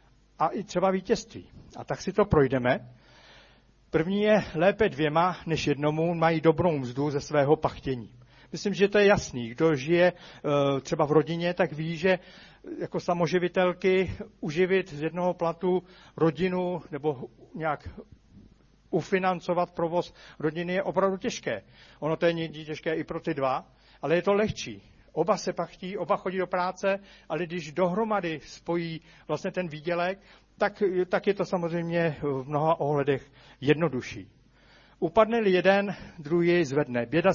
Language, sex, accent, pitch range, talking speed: Czech, male, native, 150-185 Hz, 145 wpm